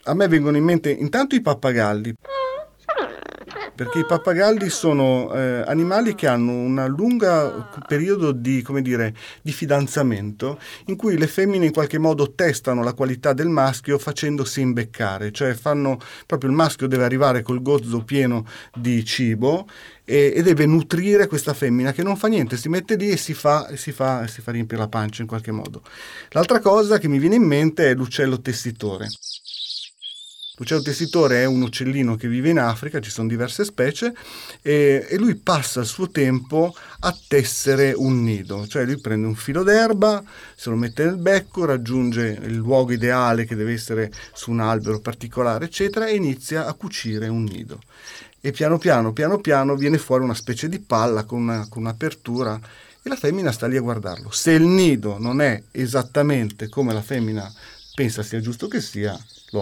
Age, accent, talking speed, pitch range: 40-59, native, 180 wpm, 115-155 Hz